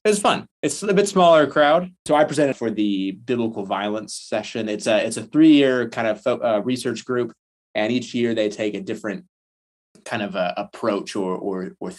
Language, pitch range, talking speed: English, 95-135 Hz, 200 wpm